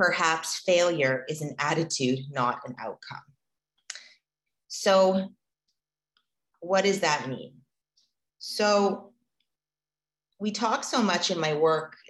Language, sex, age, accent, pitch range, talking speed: English, female, 30-49, American, 155-205 Hz, 105 wpm